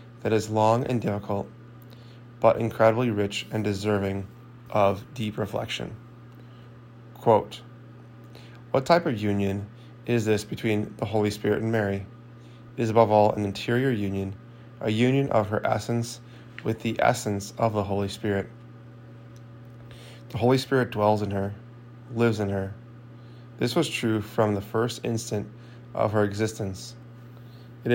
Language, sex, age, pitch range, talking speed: English, male, 20-39, 110-120 Hz, 135 wpm